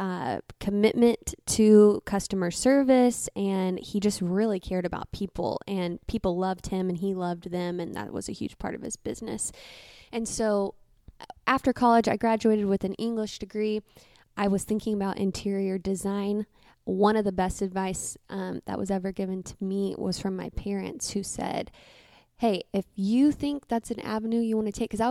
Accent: American